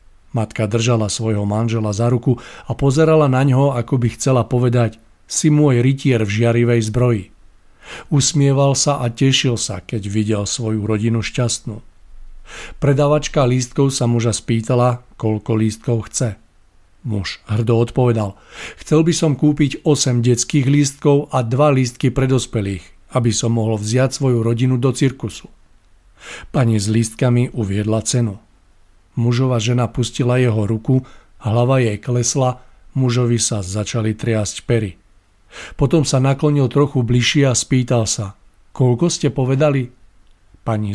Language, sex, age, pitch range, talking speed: Czech, male, 50-69, 110-130 Hz, 130 wpm